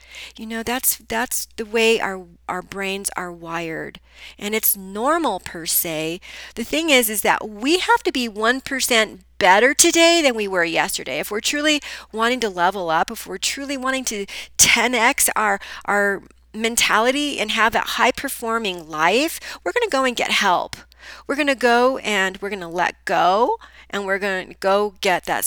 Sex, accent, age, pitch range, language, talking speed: female, American, 40-59, 175-230 Hz, English, 180 wpm